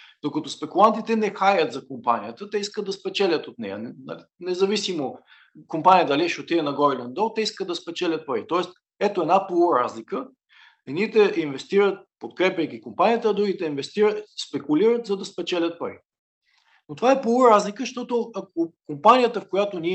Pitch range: 155-210 Hz